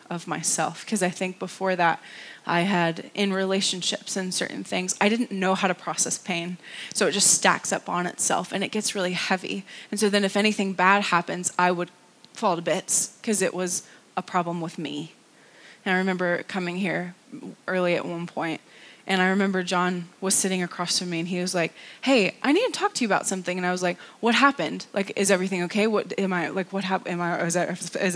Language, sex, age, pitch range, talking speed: English, female, 20-39, 180-235 Hz, 215 wpm